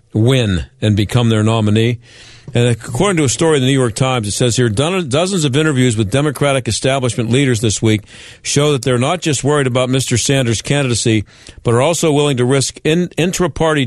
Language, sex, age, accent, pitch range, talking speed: English, male, 50-69, American, 125-160 Hz, 190 wpm